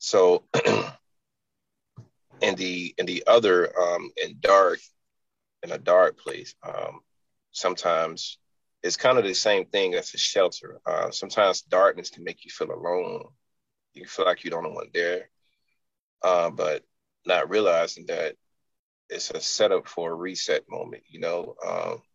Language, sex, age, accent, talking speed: English, male, 30-49, American, 145 wpm